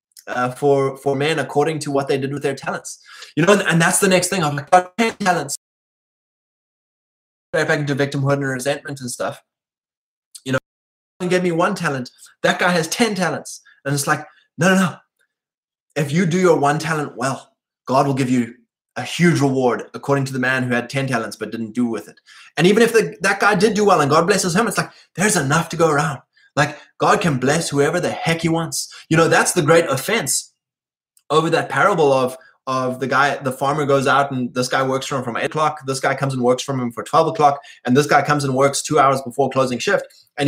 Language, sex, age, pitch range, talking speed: English, male, 20-39, 135-175 Hz, 230 wpm